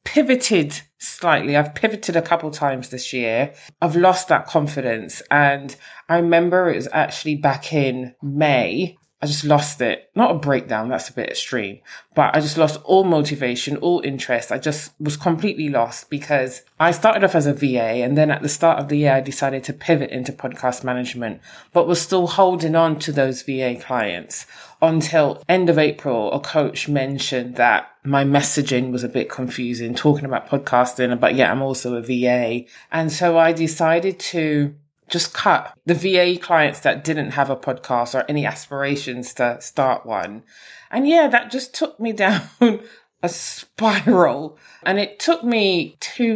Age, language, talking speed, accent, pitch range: 20-39, English, 175 wpm, British, 135-175 Hz